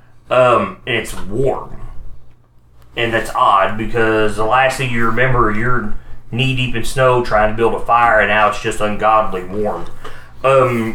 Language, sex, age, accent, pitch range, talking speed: English, male, 30-49, American, 95-125 Hz, 165 wpm